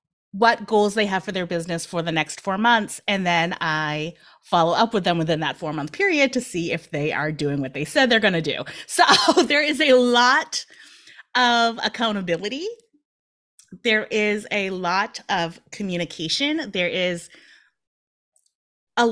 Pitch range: 170-225 Hz